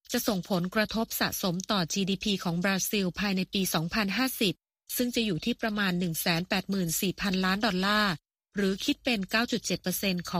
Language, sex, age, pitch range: Thai, female, 20-39, 180-220 Hz